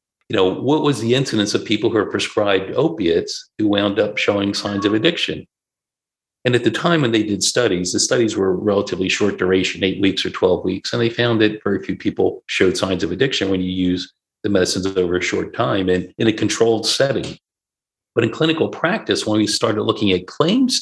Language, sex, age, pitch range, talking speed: English, male, 40-59, 95-110 Hz, 210 wpm